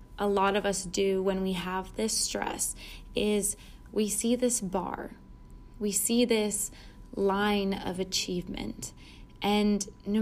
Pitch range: 195-230 Hz